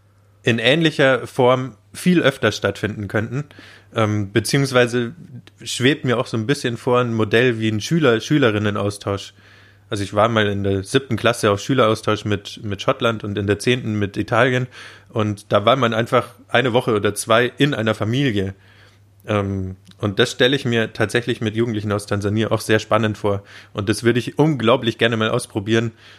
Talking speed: 175 wpm